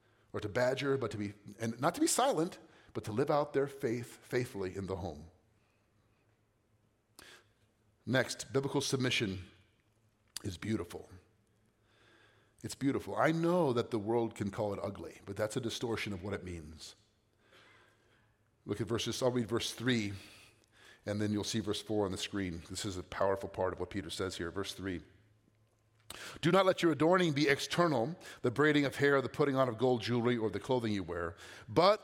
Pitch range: 105-140 Hz